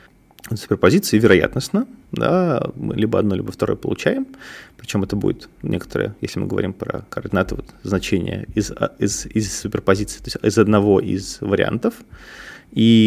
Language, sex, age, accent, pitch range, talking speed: Russian, male, 30-49, native, 100-115 Hz, 140 wpm